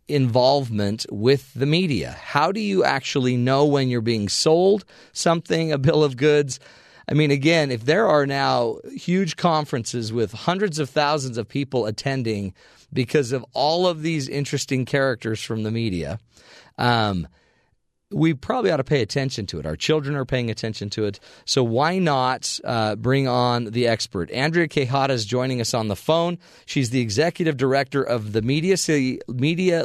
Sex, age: male, 40-59